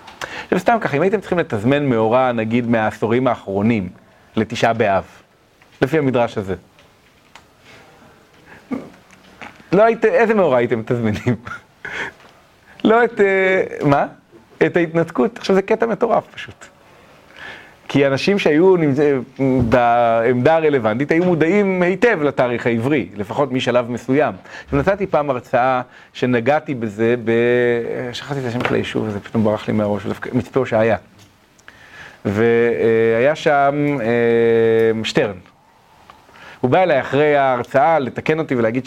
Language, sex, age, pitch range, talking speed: Hebrew, male, 30-49, 120-170 Hz, 120 wpm